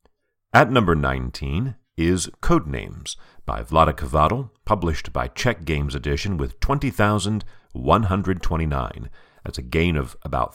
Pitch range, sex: 75-105 Hz, male